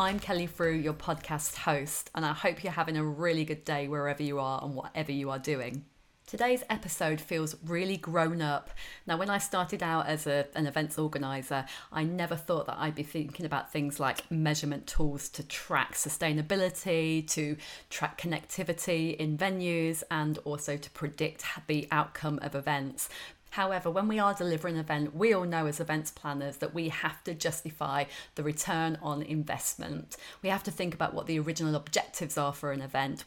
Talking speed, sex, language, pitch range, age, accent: 180 wpm, female, English, 150-175 Hz, 30-49, British